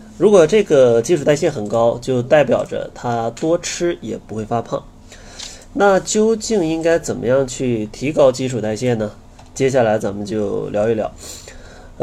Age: 20-39